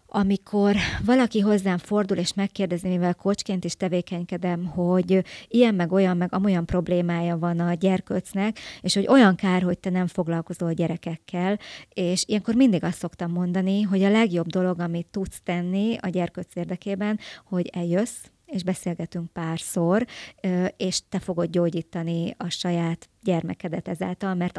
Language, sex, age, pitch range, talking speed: Hungarian, male, 30-49, 175-195 Hz, 145 wpm